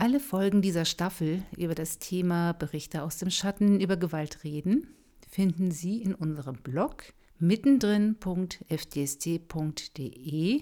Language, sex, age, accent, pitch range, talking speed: German, female, 50-69, German, 150-190 Hz, 115 wpm